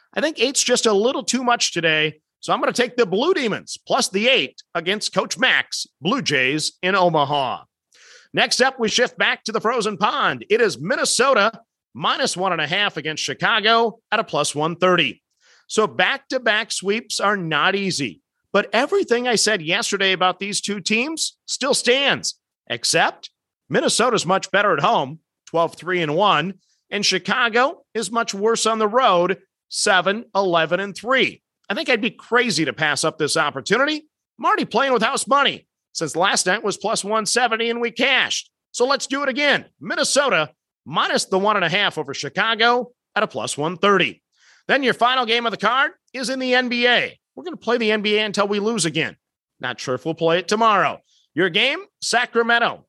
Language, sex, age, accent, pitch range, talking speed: English, male, 40-59, American, 180-245 Hz, 180 wpm